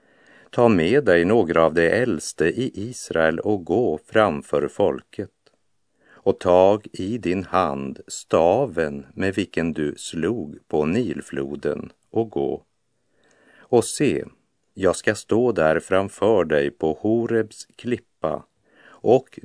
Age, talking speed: 50-69, 120 wpm